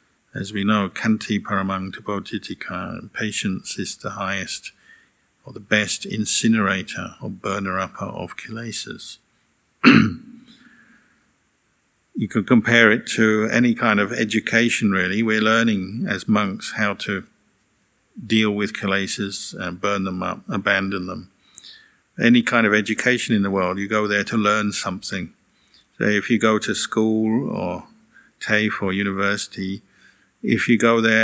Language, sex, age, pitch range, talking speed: English, male, 50-69, 100-110 Hz, 135 wpm